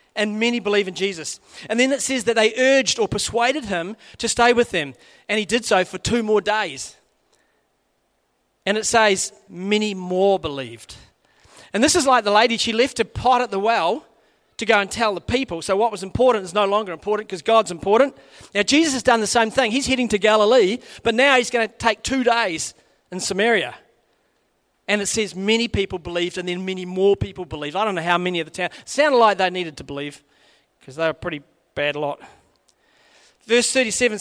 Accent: Australian